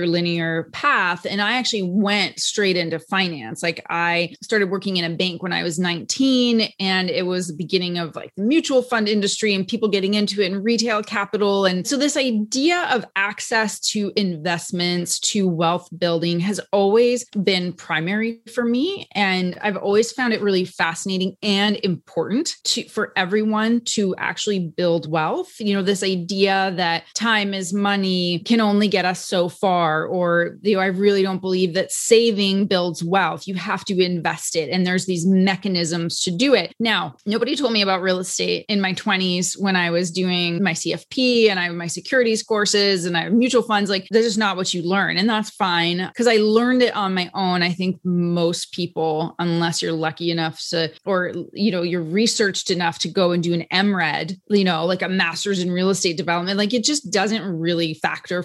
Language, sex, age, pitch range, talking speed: English, female, 30-49, 175-210 Hz, 195 wpm